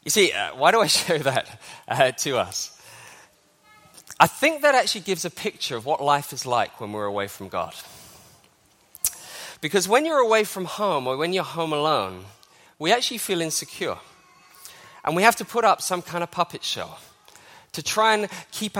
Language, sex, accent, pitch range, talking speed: English, male, British, 150-220 Hz, 185 wpm